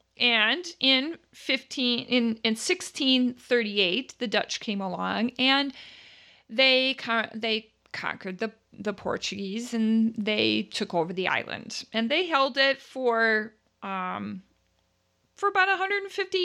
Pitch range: 210-270 Hz